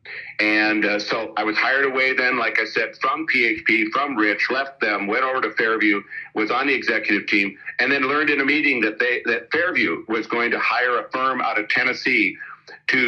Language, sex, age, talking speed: English, male, 50-69, 210 wpm